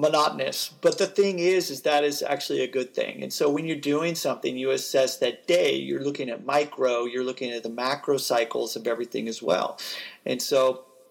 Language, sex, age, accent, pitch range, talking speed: English, male, 40-59, American, 130-170 Hz, 205 wpm